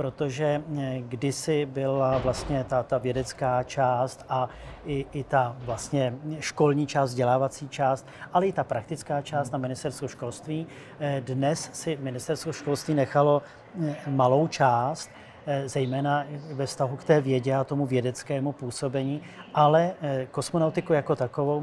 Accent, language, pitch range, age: native, Czech, 130-150 Hz, 40-59